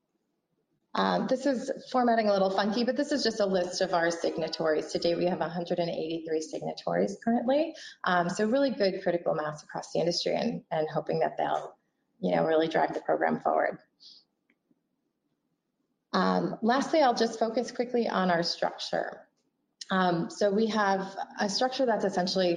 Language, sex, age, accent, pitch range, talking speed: English, female, 30-49, American, 170-215 Hz, 160 wpm